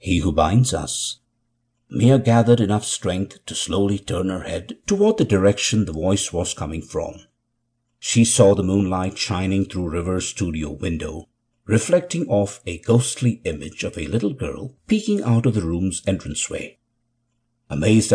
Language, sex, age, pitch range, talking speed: English, male, 60-79, 95-120 Hz, 150 wpm